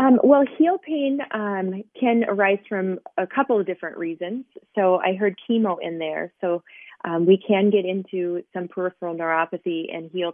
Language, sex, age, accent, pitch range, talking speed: English, female, 30-49, American, 170-210 Hz, 175 wpm